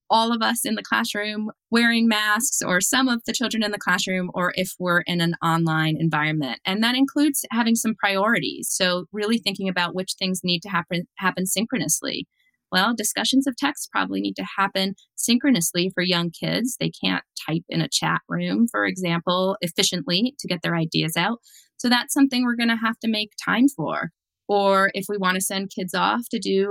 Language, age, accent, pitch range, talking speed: English, 20-39, American, 175-235 Hz, 200 wpm